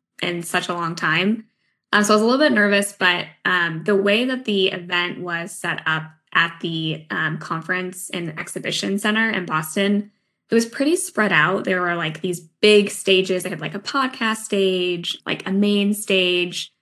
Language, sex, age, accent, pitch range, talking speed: English, female, 10-29, American, 170-205 Hz, 190 wpm